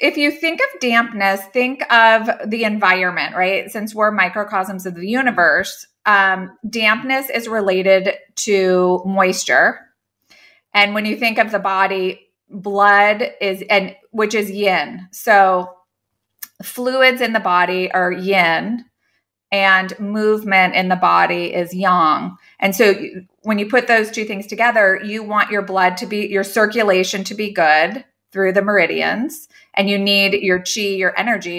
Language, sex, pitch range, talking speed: English, female, 185-220 Hz, 150 wpm